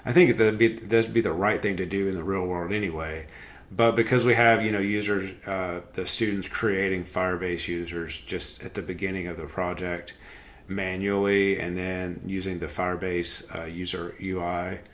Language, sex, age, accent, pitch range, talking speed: English, male, 40-59, American, 90-105 Hz, 180 wpm